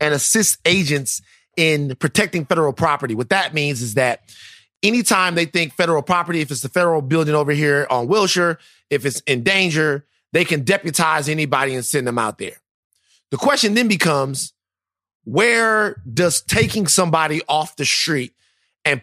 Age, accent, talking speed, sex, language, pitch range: 30-49, American, 160 wpm, male, English, 135-180 Hz